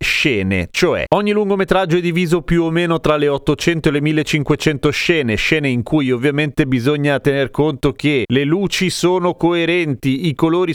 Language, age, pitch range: Italian, 30-49, 120-155 Hz